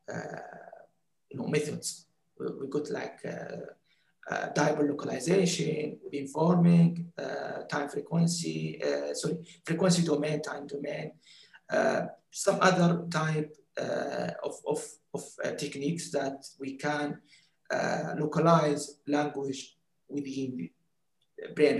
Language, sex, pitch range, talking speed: English, male, 145-175 Hz, 105 wpm